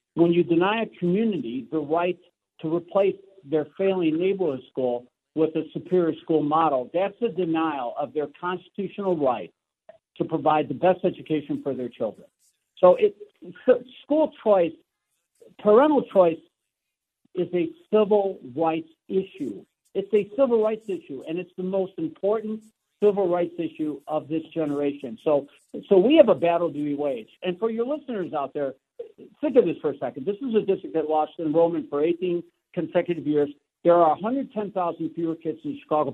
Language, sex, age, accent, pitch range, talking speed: English, male, 60-79, American, 145-195 Hz, 165 wpm